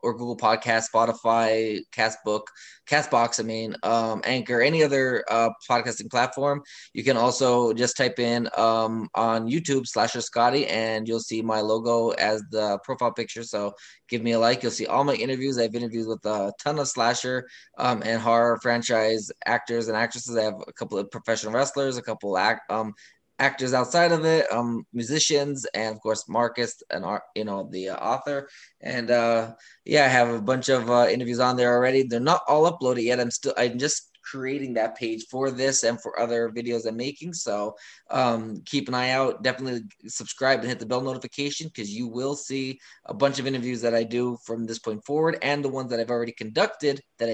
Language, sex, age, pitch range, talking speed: English, male, 20-39, 115-130 Hz, 200 wpm